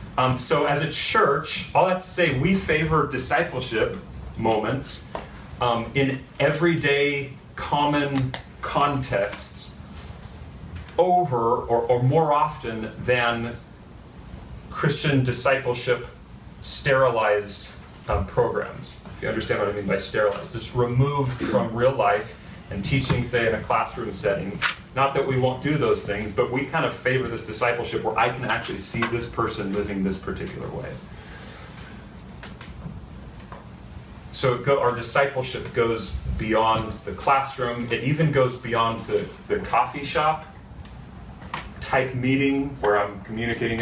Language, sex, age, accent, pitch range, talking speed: English, male, 40-59, American, 110-140 Hz, 130 wpm